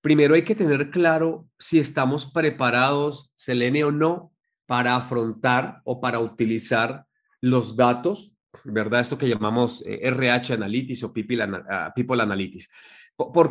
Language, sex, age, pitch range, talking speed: Spanish, male, 30-49, 125-160 Hz, 130 wpm